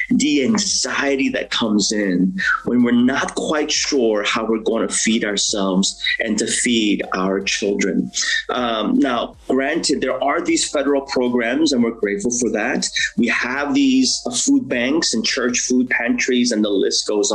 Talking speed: 165 wpm